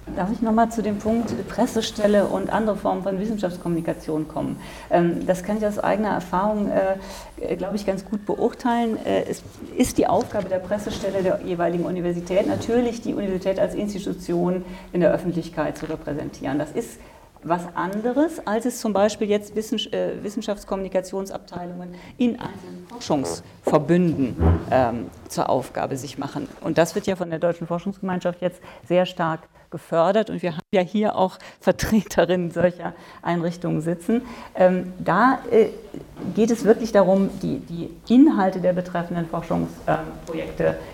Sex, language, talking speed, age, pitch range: female, German, 135 wpm, 40-59, 170-210 Hz